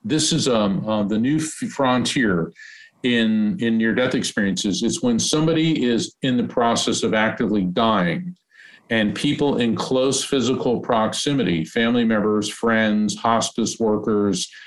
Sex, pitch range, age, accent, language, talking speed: male, 110-165 Hz, 50-69, American, English, 130 wpm